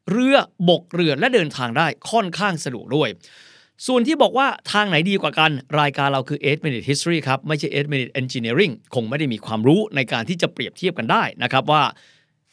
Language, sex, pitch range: Thai, male, 130-195 Hz